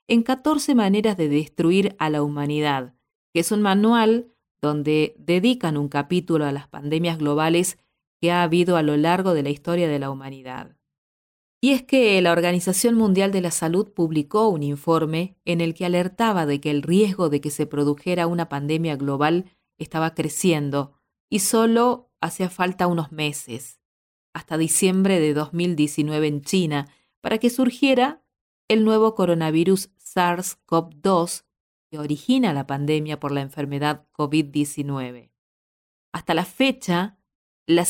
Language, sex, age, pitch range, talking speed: Spanish, female, 40-59, 150-200 Hz, 145 wpm